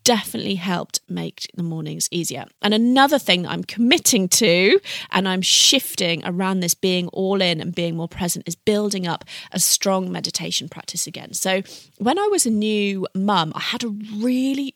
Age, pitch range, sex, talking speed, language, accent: 30-49, 170-205 Hz, female, 175 wpm, English, British